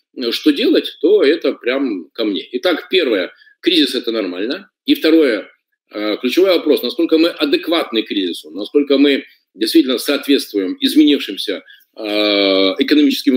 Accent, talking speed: native, 115 wpm